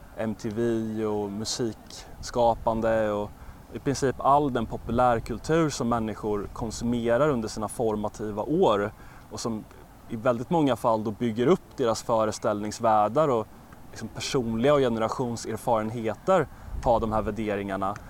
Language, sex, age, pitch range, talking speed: Swedish, male, 20-39, 110-130 Hz, 125 wpm